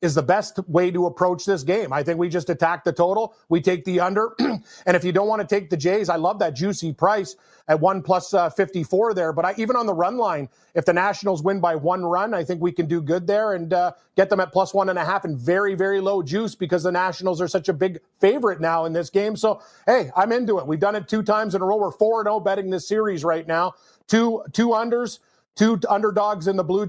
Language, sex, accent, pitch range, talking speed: English, male, American, 175-195 Hz, 255 wpm